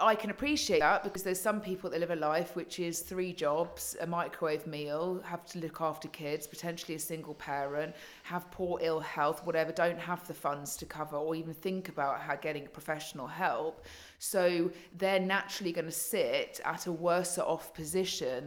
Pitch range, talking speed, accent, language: 155-190 Hz, 190 wpm, British, English